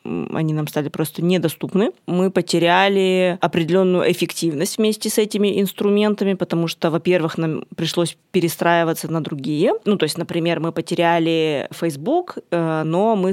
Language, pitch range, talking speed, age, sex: Russian, 160-185 Hz, 135 wpm, 20-39, female